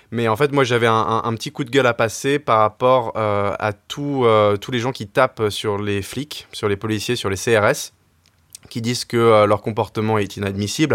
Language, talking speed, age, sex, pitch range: French, 230 wpm, 20-39, male, 105-120 Hz